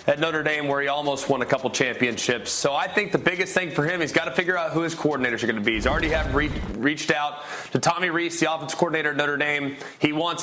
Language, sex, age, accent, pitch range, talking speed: English, male, 30-49, American, 145-175 Hz, 260 wpm